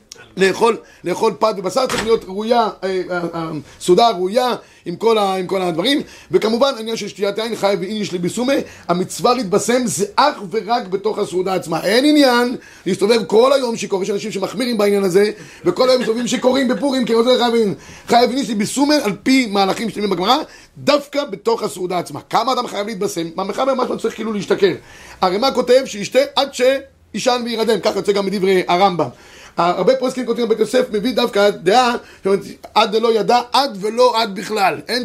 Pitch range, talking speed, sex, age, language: 195-245 Hz, 150 wpm, male, 30-49, Hebrew